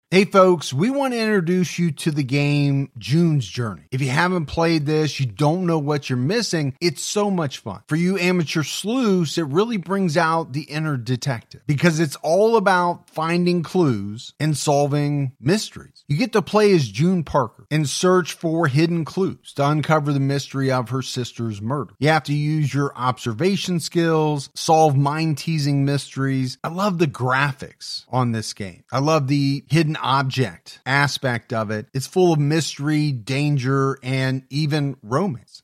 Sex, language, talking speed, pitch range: male, English, 170 wpm, 135-175 Hz